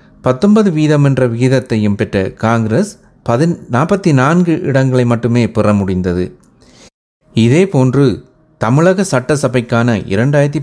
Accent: native